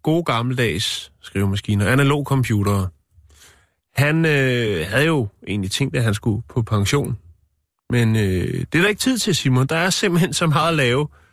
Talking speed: 175 wpm